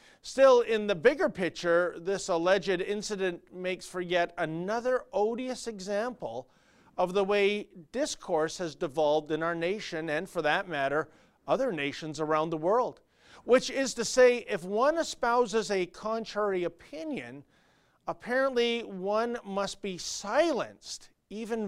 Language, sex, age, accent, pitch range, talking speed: English, male, 40-59, American, 165-225 Hz, 135 wpm